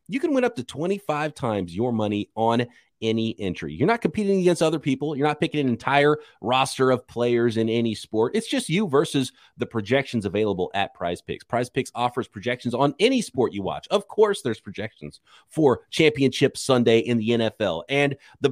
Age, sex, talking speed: 30-49, male, 195 wpm